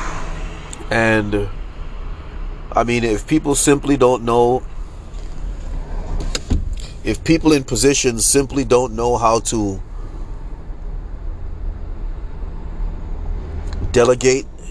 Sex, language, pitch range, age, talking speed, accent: male, English, 80-120 Hz, 30-49, 75 wpm, American